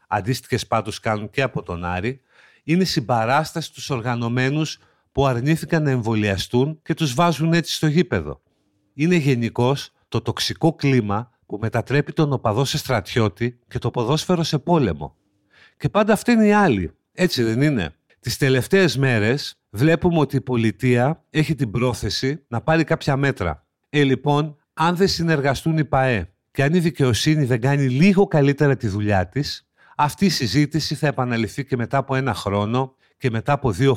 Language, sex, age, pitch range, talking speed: Greek, male, 50-69, 115-155 Hz, 165 wpm